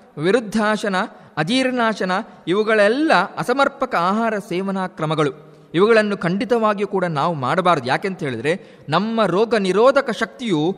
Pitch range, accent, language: 180-235 Hz, native, Kannada